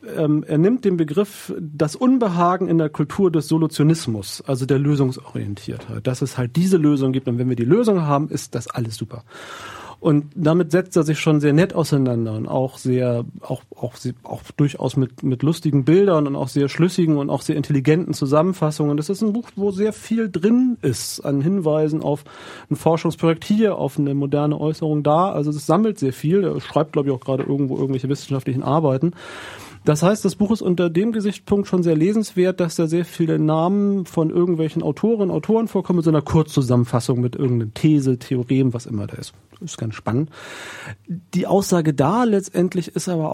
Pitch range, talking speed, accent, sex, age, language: 135-180 Hz, 190 wpm, German, male, 40-59, German